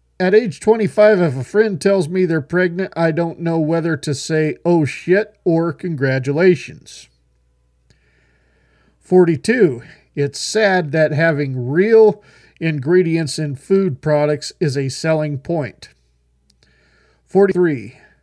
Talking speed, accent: 115 wpm, American